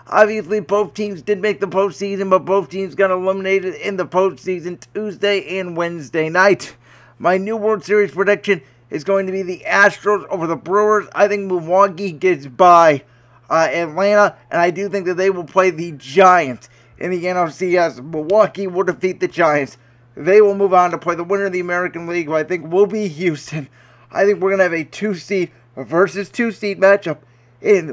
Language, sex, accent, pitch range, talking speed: English, male, American, 165-205 Hz, 195 wpm